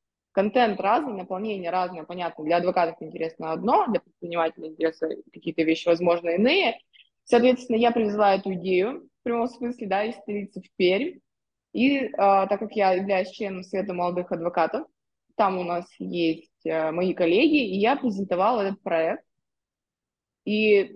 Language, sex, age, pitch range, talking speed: Russian, female, 20-39, 175-225 Hz, 145 wpm